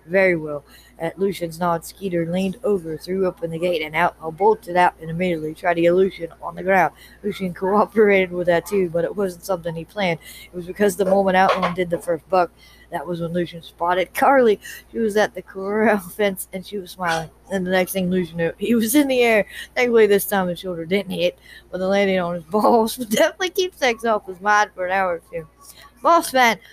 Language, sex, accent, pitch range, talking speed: English, female, American, 180-230 Hz, 230 wpm